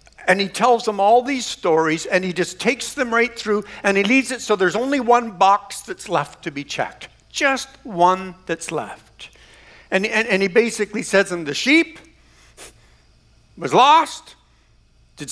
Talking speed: 170 wpm